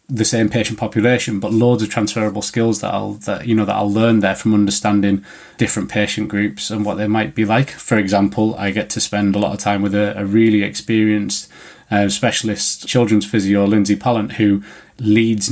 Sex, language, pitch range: male, English, 105-120 Hz